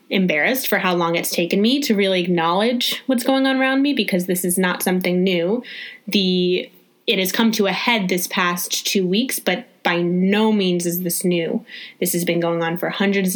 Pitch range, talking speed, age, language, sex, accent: 185-230 Hz, 205 wpm, 20-39, English, female, American